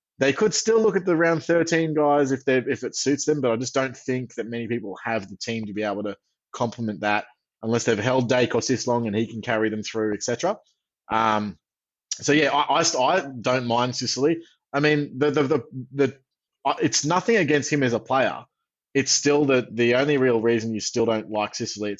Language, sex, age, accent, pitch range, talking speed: English, male, 20-39, Australian, 110-140 Hz, 220 wpm